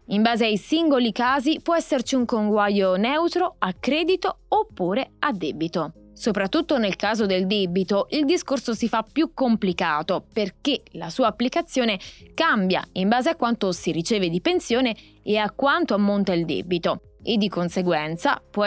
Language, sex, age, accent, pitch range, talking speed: Italian, female, 20-39, native, 185-260 Hz, 160 wpm